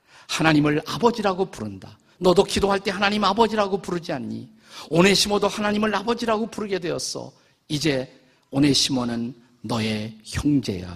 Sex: male